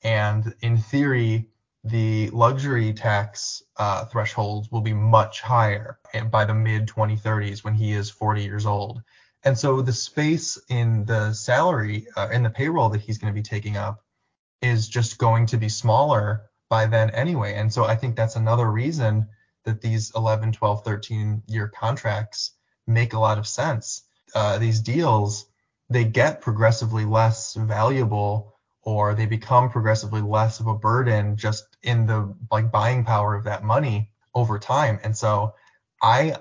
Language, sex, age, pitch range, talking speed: English, male, 20-39, 105-115 Hz, 160 wpm